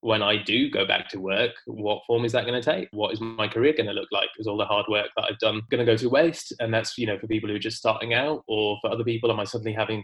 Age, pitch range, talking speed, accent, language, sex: 20-39, 105-115 Hz, 325 wpm, British, English, male